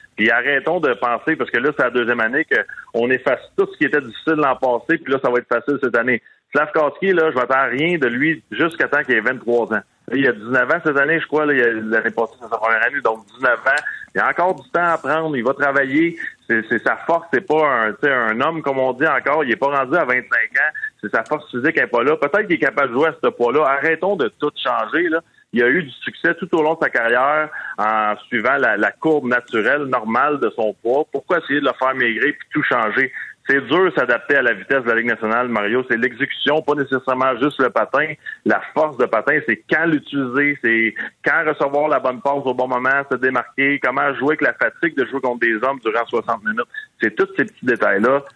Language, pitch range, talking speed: French, 125-160 Hz, 250 wpm